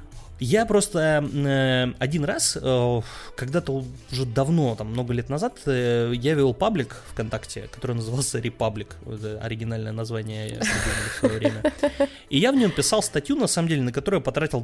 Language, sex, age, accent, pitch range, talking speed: Russian, male, 20-39, native, 115-150 Hz, 155 wpm